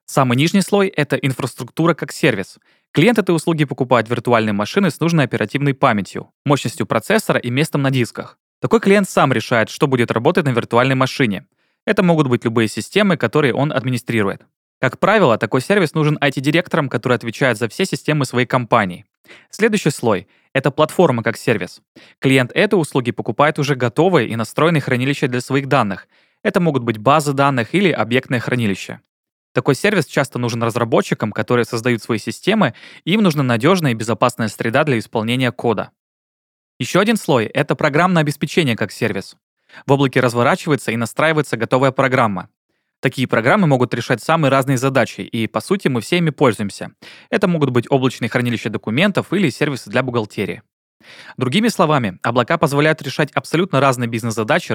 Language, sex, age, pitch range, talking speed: Russian, male, 20-39, 120-155 Hz, 160 wpm